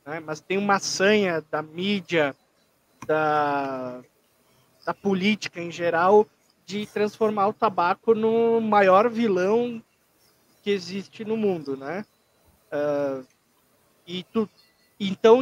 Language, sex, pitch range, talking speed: Portuguese, male, 165-215 Hz, 105 wpm